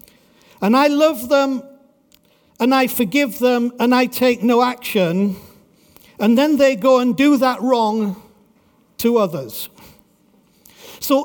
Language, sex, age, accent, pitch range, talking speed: English, male, 50-69, British, 220-275 Hz, 130 wpm